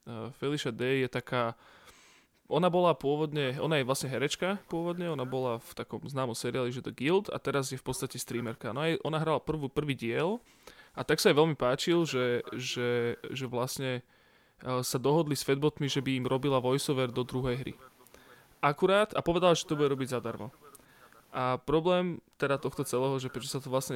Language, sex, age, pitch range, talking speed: Slovak, male, 20-39, 125-150 Hz, 190 wpm